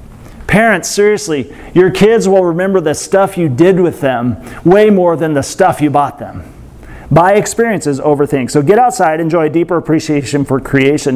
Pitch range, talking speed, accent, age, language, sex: 145-190 Hz, 175 wpm, American, 40-59, English, male